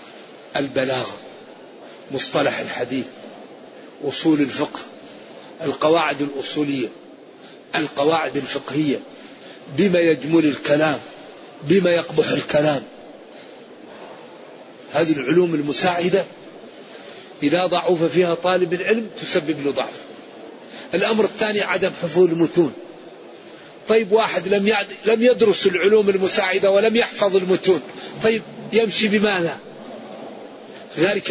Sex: male